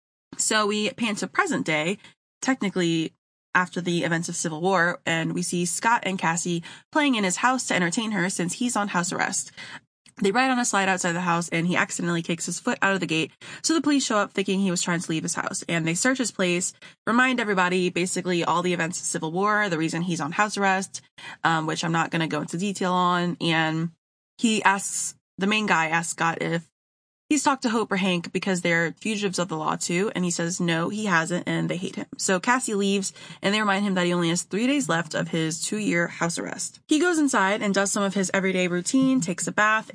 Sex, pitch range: female, 170-210 Hz